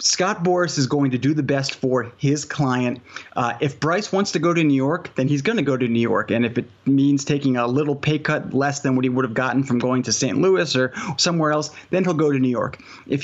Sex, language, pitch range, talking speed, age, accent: male, English, 125-150 Hz, 270 wpm, 30-49, American